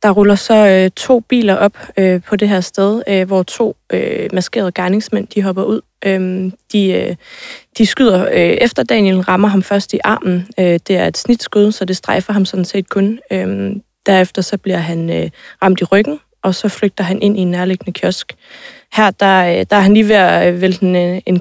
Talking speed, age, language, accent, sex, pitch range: 210 wpm, 20-39, Danish, native, female, 180-205 Hz